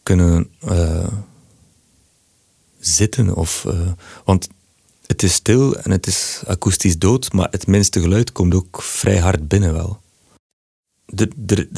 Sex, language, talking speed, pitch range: male, Dutch, 125 wpm, 90-105 Hz